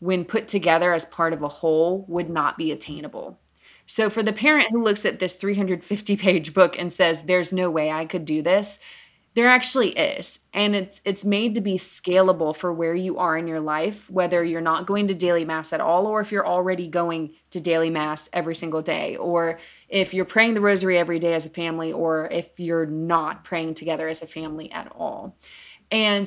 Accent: American